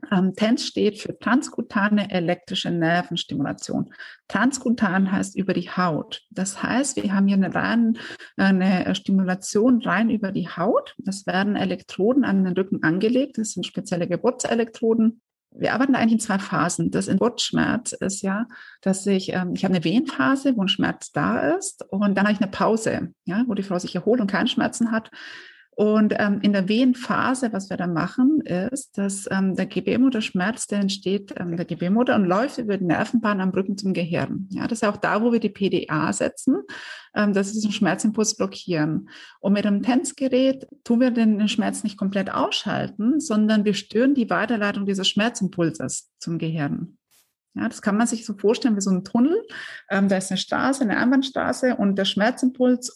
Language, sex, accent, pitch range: German, female, German, 190-240 Hz